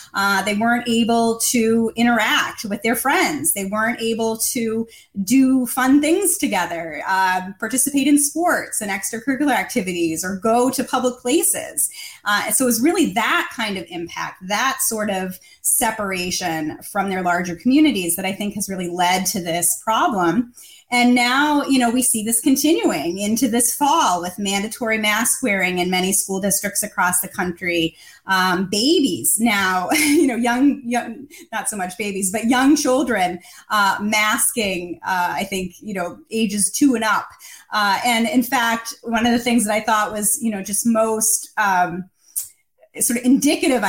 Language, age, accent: English, 30-49, American